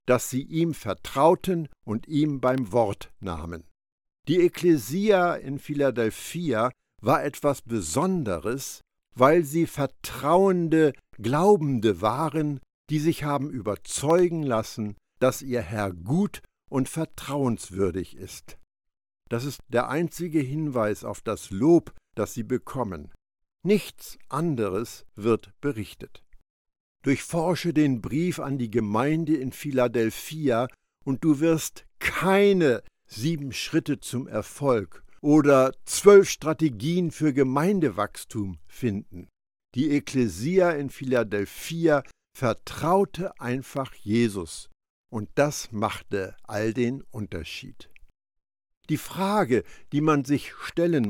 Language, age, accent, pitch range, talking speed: German, 60-79, German, 110-160 Hz, 105 wpm